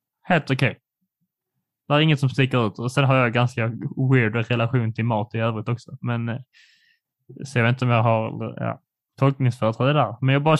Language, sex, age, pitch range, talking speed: Swedish, male, 20-39, 125-145 Hz, 205 wpm